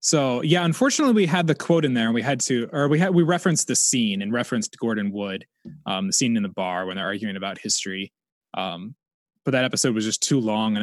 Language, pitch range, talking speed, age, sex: English, 120-185 Hz, 245 wpm, 20-39, male